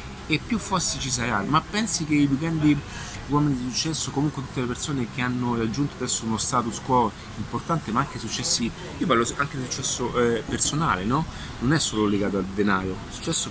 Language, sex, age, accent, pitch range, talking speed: Italian, male, 30-49, native, 110-135 Hz, 195 wpm